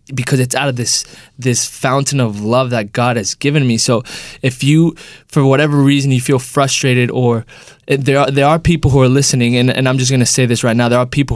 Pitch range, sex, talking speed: 125-140 Hz, male, 240 wpm